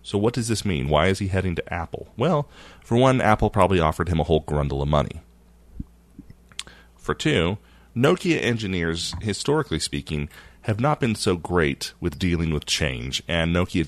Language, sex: English, male